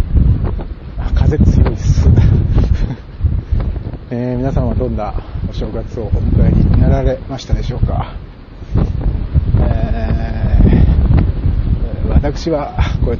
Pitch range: 90-130 Hz